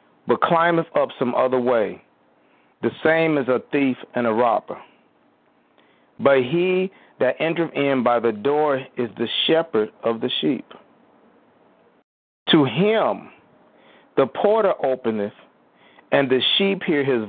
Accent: American